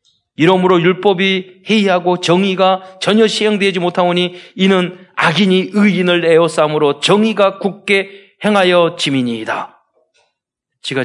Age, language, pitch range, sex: 40-59, Korean, 145-210 Hz, male